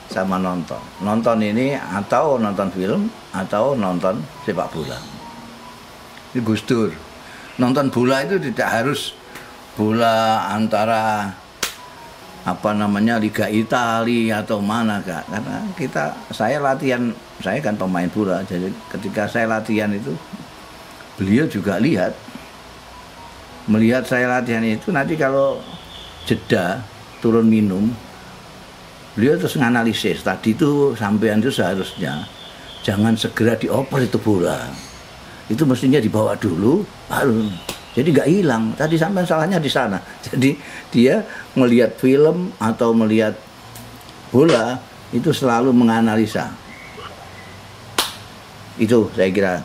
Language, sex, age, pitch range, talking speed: Indonesian, male, 50-69, 105-125 Hz, 110 wpm